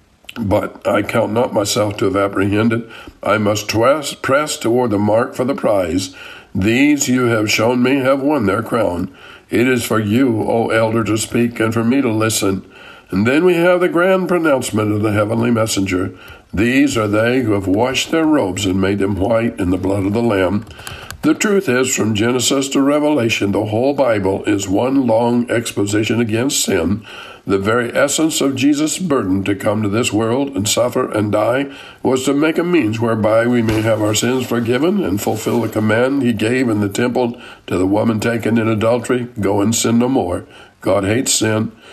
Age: 60-79